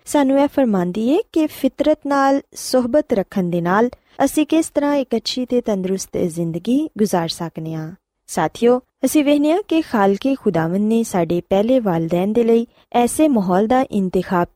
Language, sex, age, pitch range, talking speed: Punjabi, female, 20-39, 185-275 Hz, 160 wpm